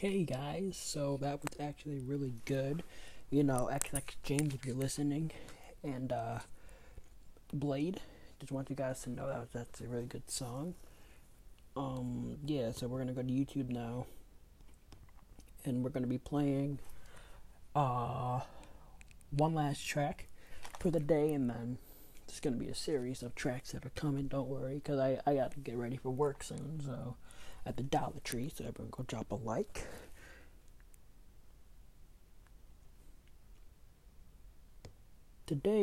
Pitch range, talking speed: 120-150 Hz, 145 wpm